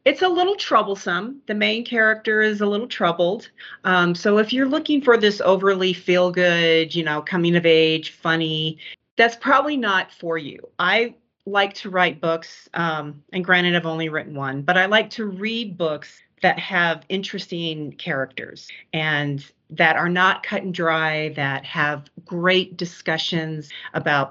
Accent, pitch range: American, 155-200 Hz